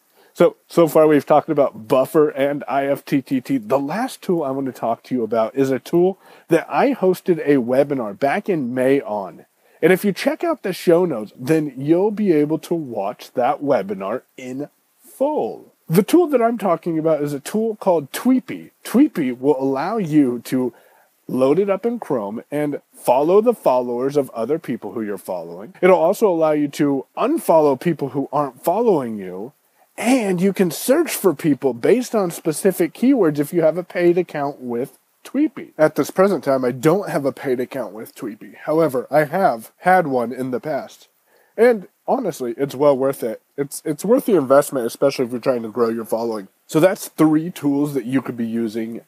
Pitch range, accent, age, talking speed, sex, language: 135-195 Hz, American, 30-49, 190 wpm, male, English